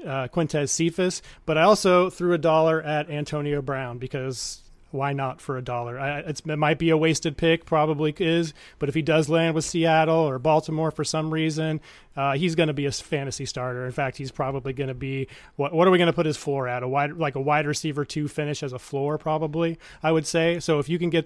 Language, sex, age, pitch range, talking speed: English, male, 30-49, 140-160 Hz, 240 wpm